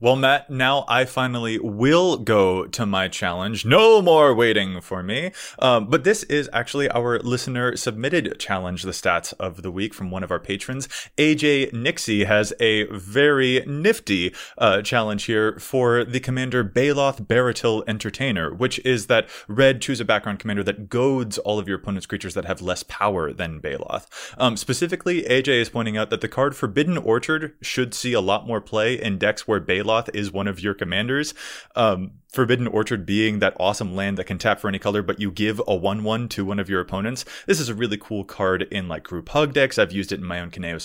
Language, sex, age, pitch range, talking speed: English, male, 20-39, 105-135 Hz, 200 wpm